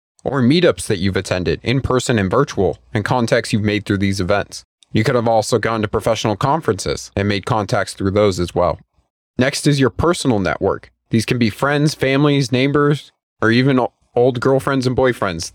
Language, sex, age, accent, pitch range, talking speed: English, male, 30-49, American, 100-130 Hz, 185 wpm